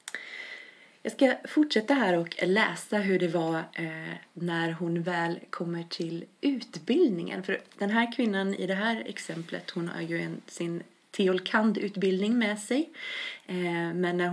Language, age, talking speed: English, 30-49, 135 wpm